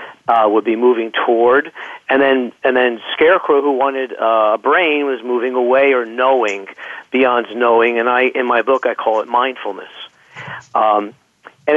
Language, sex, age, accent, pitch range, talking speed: English, male, 50-69, American, 120-145 Hz, 170 wpm